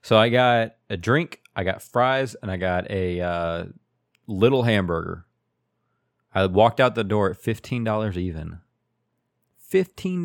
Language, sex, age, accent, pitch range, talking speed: English, male, 30-49, American, 90-120 Hz, 145 wpm